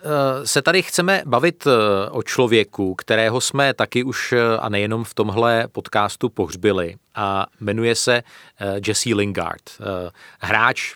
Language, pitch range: Czech, 105-120 Hz